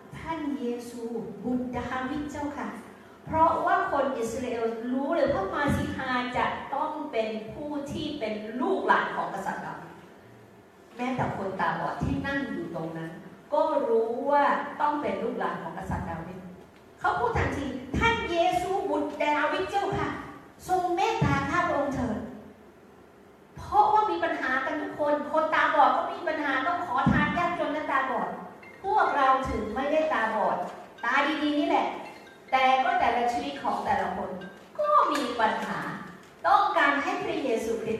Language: English